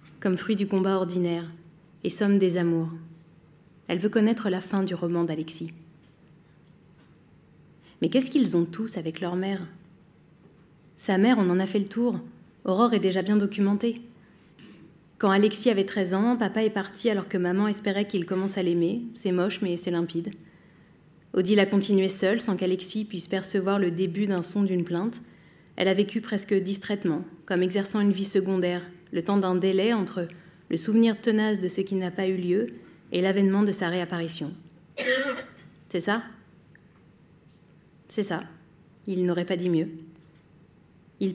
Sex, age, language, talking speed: female, 30-49, French, 165 wpm